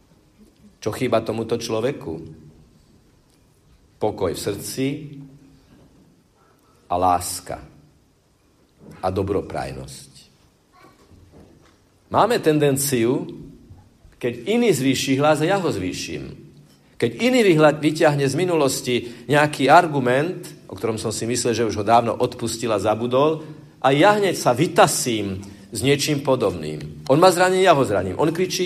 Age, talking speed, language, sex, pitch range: 50-69, 115 wpm, Slovak, male, 95-150 Hz